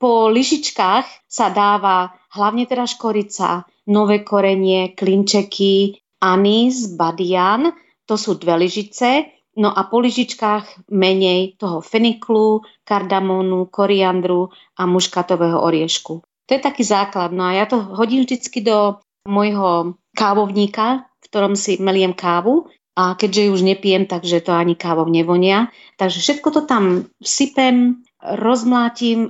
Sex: female